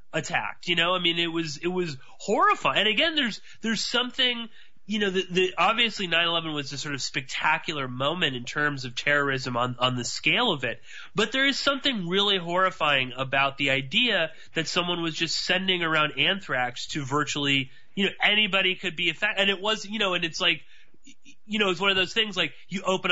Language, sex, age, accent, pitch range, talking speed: English, male, 30-49, American, 155-210 Hz, 205 wpm